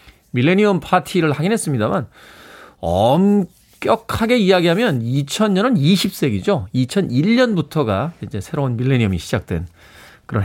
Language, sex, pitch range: Korean, male, 115-175 Hz